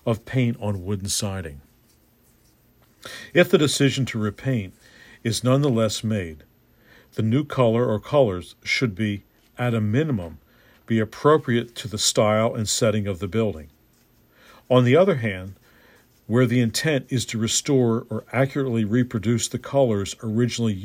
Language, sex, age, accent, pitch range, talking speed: English, male, 50-69, American, 105-125 Hz, 140 wpm